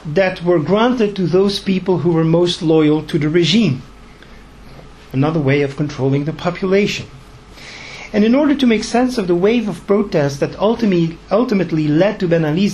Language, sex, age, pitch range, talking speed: English, male, 50-69, 160-210 Hz, 175 wpm